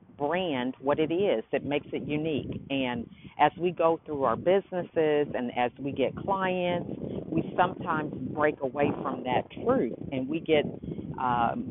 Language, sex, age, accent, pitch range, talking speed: English, female, 50-69, American, 135-170 Hz, 160 wpm